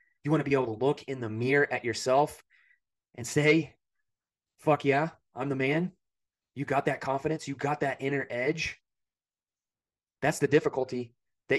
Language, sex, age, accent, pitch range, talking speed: English, male, 30-49, American, 115-145 Hz, 165 wpm